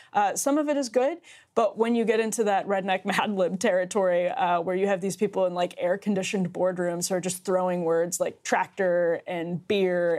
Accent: American